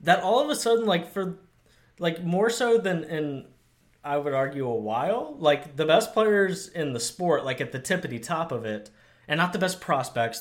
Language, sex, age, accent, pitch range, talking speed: English, male, 20-39, American, 115-170 Hz, 210 wpm